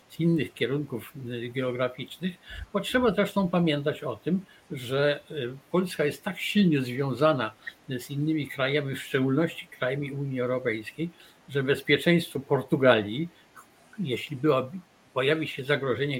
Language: Polish